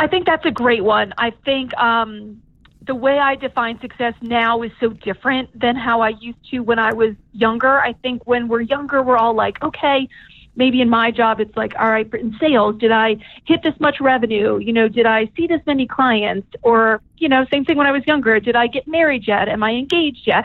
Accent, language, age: American, English, 40-59